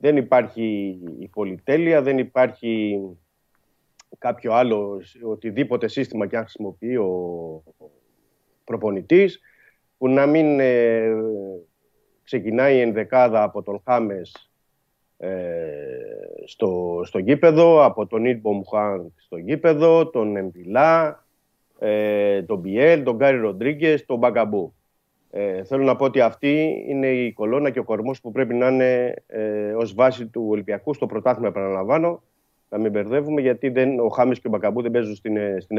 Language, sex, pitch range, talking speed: Greek, male, 100-135 Hz, 135 wpm